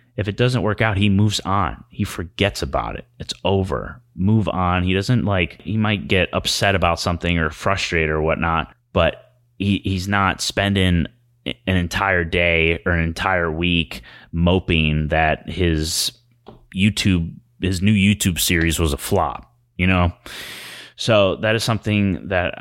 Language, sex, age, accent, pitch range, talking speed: English, male, 30-49, American, 80-100 Hz, 155 wpm